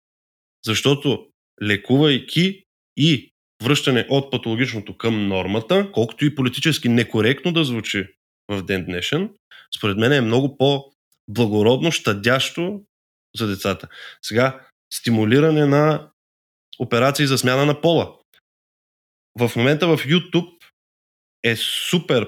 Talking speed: 110 wpm